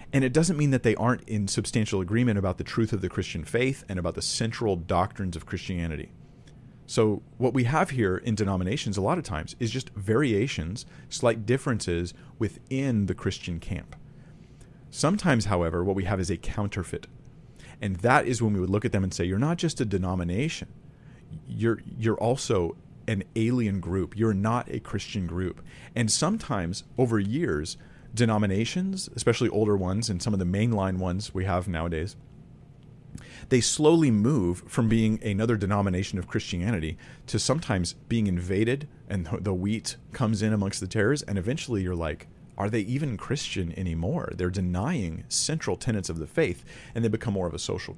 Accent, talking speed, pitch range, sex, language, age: American, 175 wpm, 95-130 Hz, male, English, 40-59